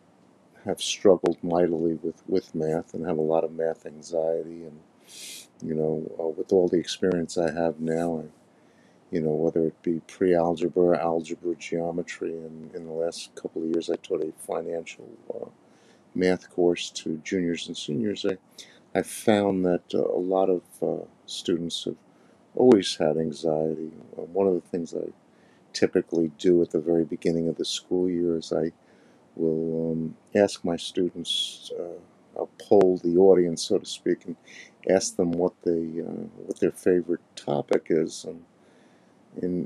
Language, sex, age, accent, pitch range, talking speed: English, male, 50-69, American, 80-90 Hz, 165 wpm